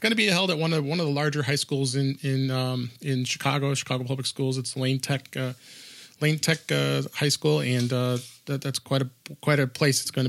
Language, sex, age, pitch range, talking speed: English, male, 30-49, 125-145 Hz, 235 wpm